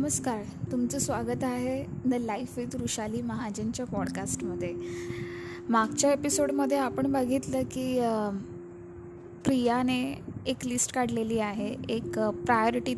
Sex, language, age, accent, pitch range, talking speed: female, Marathi, 20-39, native, 215-250 Hz, 110 wpm